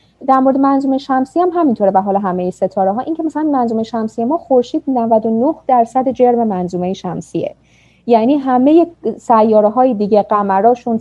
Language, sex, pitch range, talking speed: Persian, female, 215-275 Hz, 165 wpm